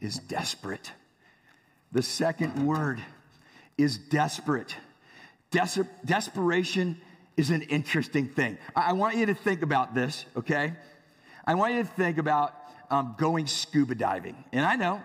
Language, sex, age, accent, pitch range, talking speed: English, male, 50-69, American, 150-210 Hz, 140 wpm